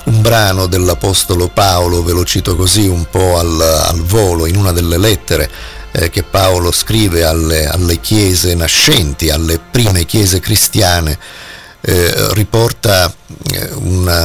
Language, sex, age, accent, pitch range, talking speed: Italian, male, 50-69, native, 85-110 Hz, 135 wpm